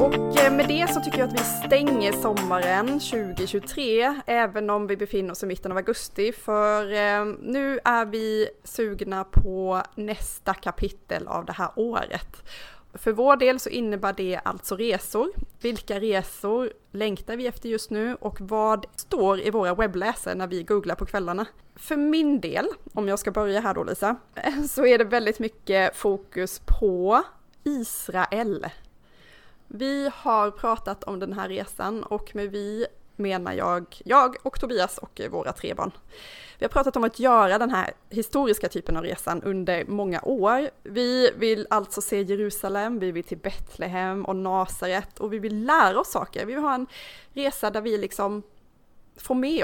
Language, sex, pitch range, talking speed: Swedish, female, 195-245 Hz, 165 wpm